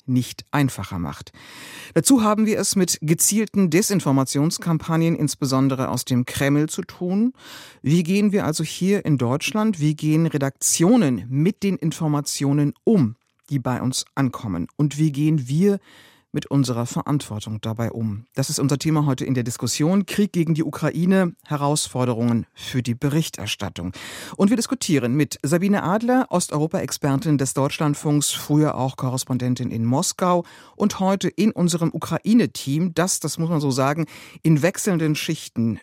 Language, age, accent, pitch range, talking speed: German, 50-69, German, 125-170 Hz, 145 wpm